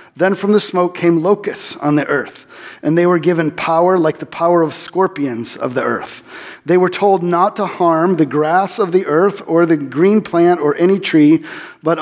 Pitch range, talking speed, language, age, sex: 155-180 Hz, 205 wpm, English, 40-59, male